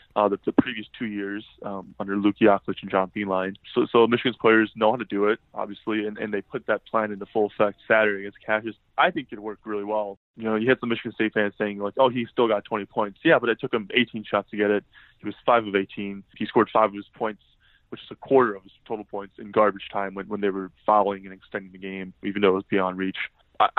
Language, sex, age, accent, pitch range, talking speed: English, male, 20-39, American, 100-115 Hz, 265 wpm